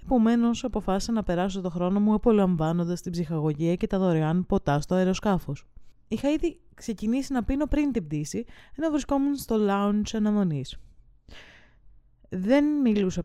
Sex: female